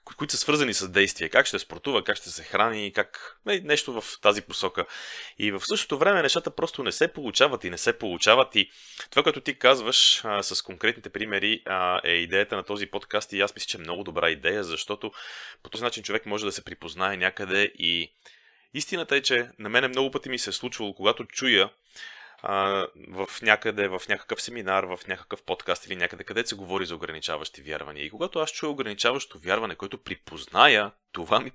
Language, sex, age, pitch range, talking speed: Bulgarian, male, 30-49, 95-120 Hz, 195 wpm